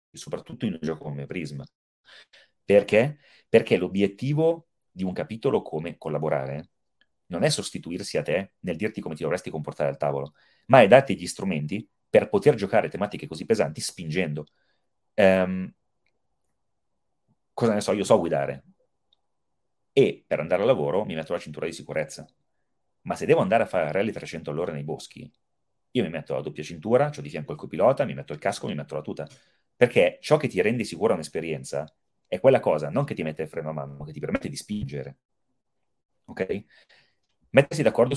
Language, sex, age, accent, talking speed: Italian, male, 30-49, native, 180 wpm